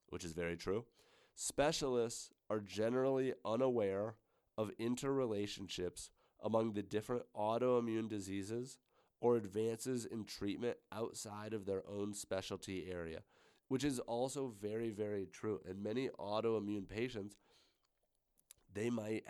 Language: English